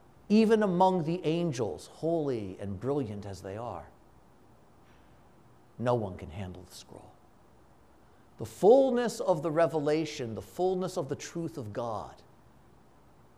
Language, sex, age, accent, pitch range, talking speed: English, male, 50-69, American, 120-195 Hz, 125 wpm